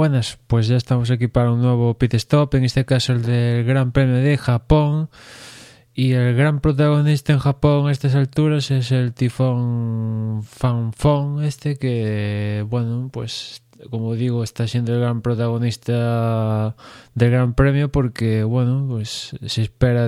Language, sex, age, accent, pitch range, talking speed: Spanish, male, 20-39, Spanish, 115-130 Hz, 150 wpm